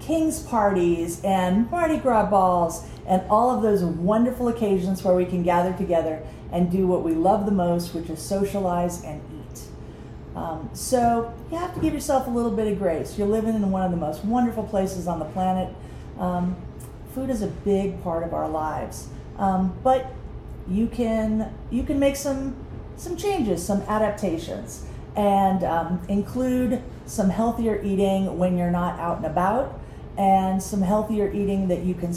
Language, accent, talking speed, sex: English, American, 175 wpm, female